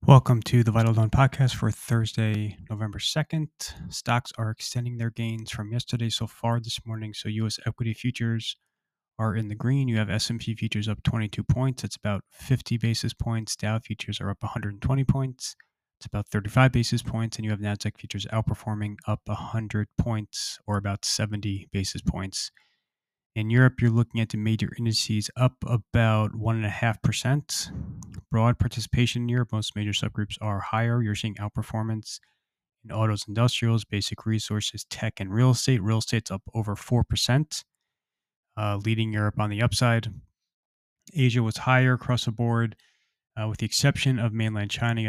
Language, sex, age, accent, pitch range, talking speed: English, male, 20-39, American, 105-120 Hz, 165 wpm